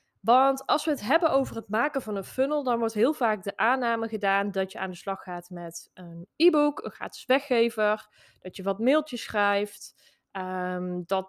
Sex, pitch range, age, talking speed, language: female, 185-235 Hz, 20-39, 190 wpm, Dutch